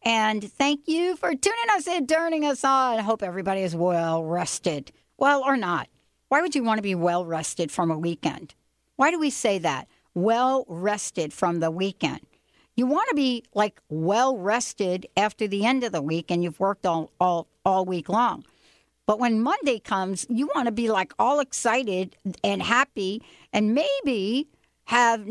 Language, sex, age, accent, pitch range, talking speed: English, female, 60-79, American, 180-260 Hz, 175 wpm